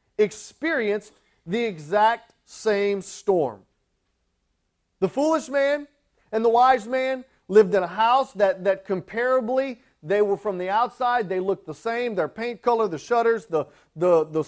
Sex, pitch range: male, 175-235 Hz